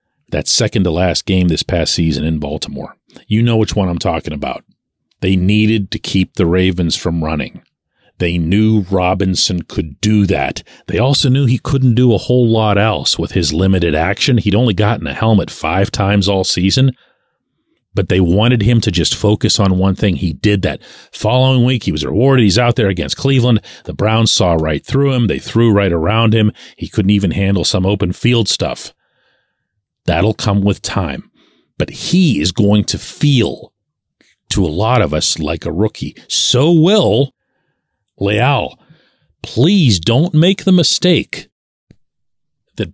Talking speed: 170 wpm